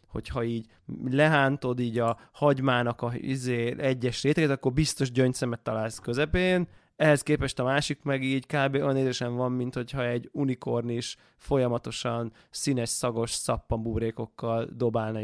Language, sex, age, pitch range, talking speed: Hungarian, male, 20-39, 120-145 Hz, 130 wpm